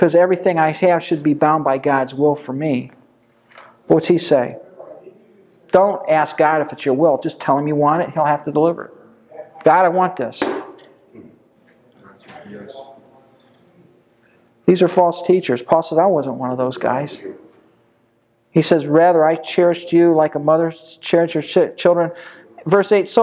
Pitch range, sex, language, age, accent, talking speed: 155-220 Hz, male, English, 50-69, American, 170 wpm